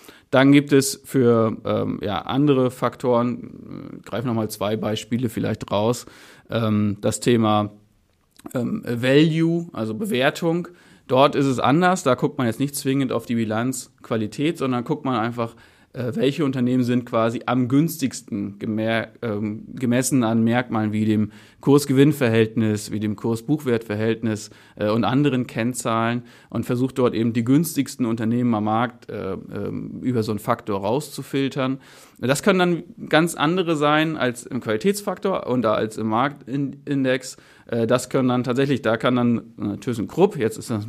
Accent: German